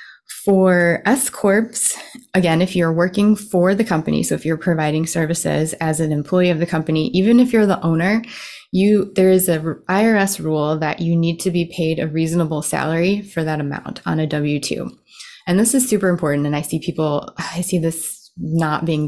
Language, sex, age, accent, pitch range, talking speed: English, female, 20-39, American, 155-190 Hz, 190 wpm